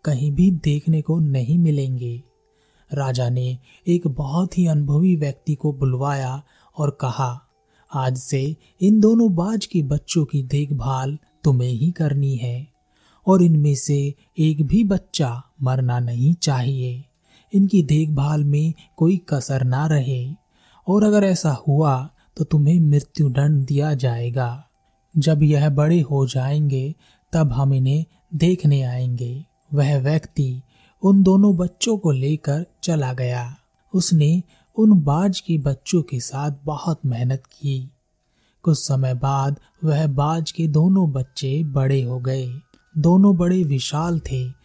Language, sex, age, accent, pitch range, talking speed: Hindi, male, 30-49, native, 130-160 Hz, 135 wpm